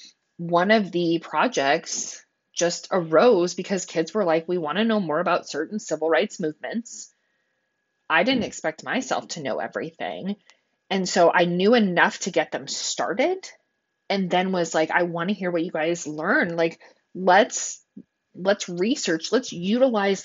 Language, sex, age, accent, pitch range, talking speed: English, female, 20-39, American, 165-225 Hz, 160 wpm